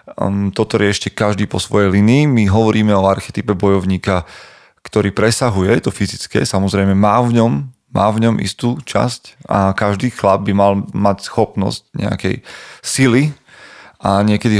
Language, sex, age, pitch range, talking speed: Slovak, male, 30-49, 95-115 Hz, 150 wpm